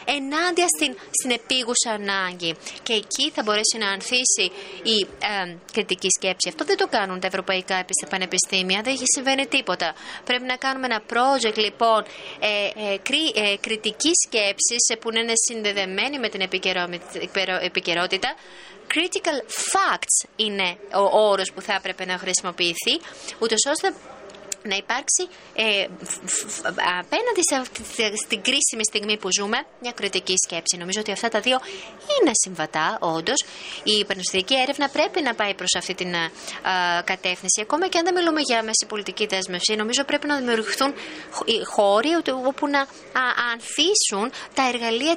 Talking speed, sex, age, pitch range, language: 155 wpm, female, 20-39, 190-265 Hz, French